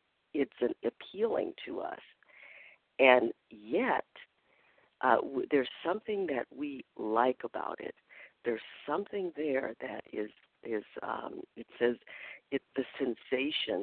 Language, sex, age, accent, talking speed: English, female, 50-69, American, 110 wpm